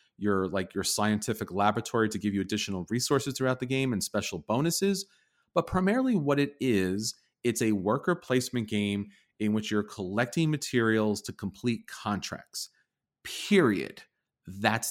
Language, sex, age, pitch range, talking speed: English, male, 30-49, 105-135 Hz, 140 wpm